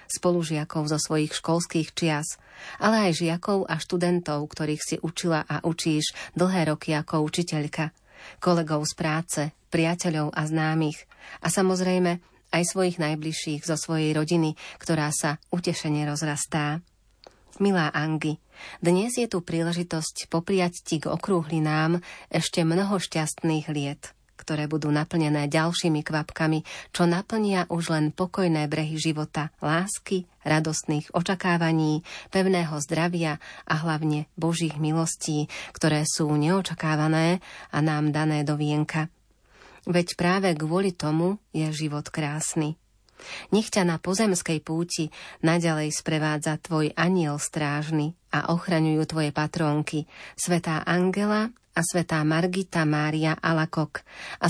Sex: female